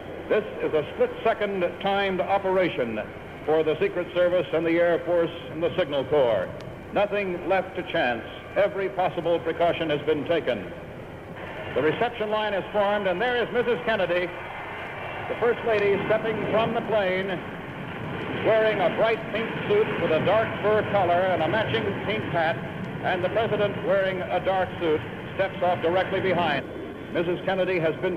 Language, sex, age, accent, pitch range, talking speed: English, male, 60-79, American, 155-195 Hz, 160 wpm